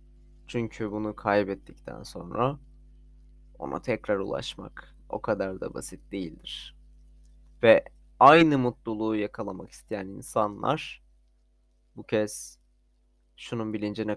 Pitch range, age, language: 85-120 Hz, 20-39, Turkish